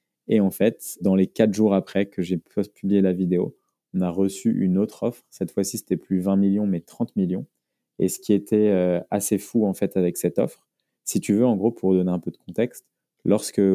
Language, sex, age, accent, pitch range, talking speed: French, male, 20-39, French, 90-105 Hz, 225 wpm